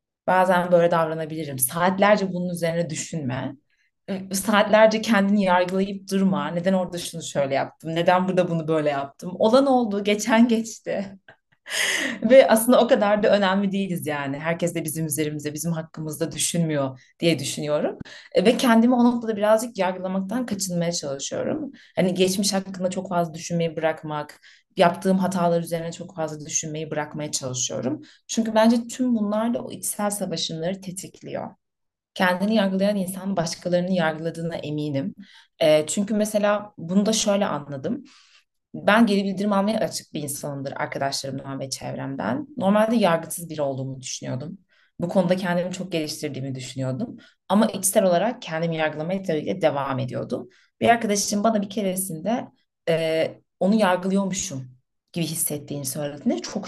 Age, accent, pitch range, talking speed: 30-49, native, 160-210 Hz, 135 wpm